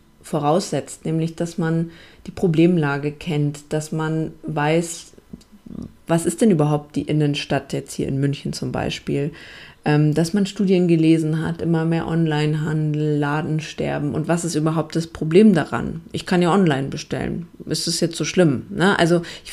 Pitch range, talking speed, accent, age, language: 155-175 Hz, 155 wpm, German, 30-49, German